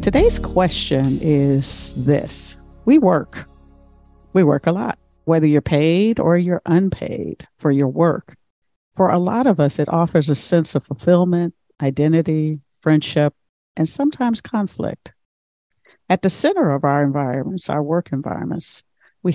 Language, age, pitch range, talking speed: English, 50-69, 140-180 Hz, 140 wpm